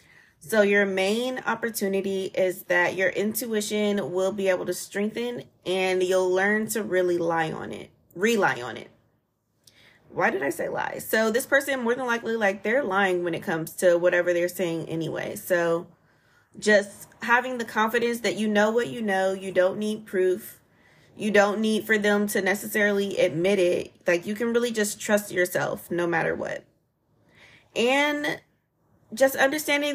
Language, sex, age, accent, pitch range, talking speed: English, female, 20-39, American, 185-225 Hz, 165 wpm